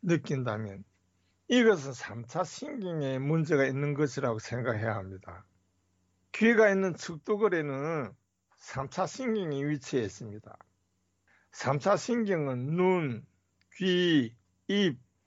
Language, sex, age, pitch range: Korean, male, 60-79, 115-180 Hz